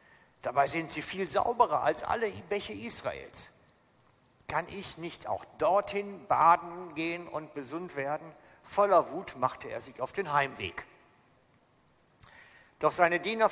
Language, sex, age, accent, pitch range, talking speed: German, male, 60-79, German, 135-180 Hz, 135 wpm